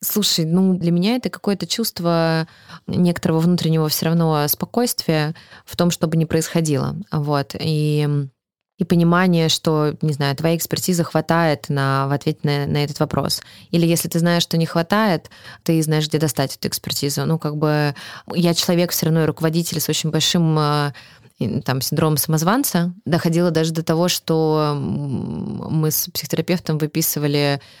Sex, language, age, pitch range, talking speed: female, Russian, 20-39, 150-175 Hz, 150 wpm